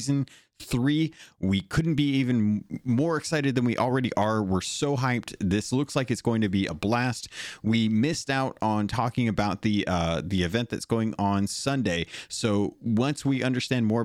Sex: male